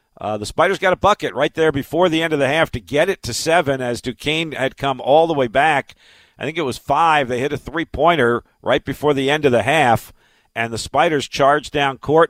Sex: male